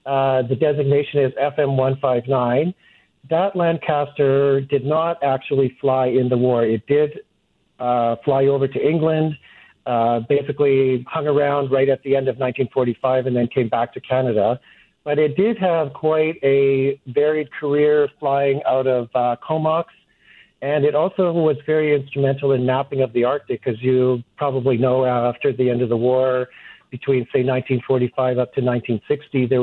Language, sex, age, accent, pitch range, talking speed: English, male, 50-69, American, 130-145 Hz, 160 wpm